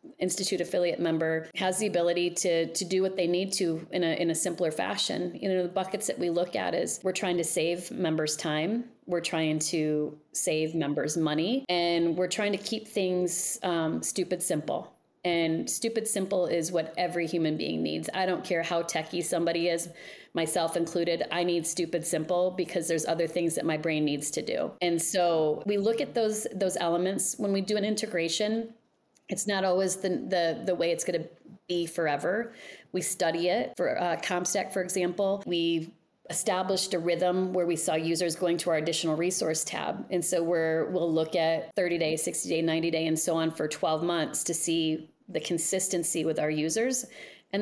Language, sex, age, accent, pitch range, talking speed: English, female, 30-49, American, 165-190 Hz, 190 wpm